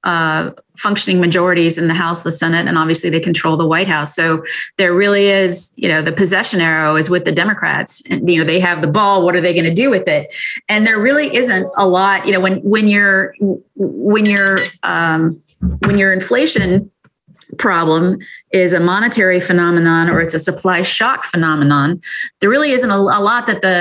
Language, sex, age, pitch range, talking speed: English, female, 30-49, 160-195 Hz, 195 wpm